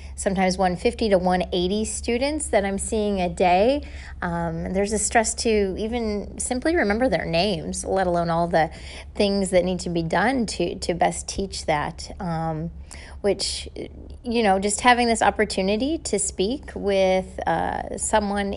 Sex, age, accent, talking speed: female, 30-49, American, 150 wpm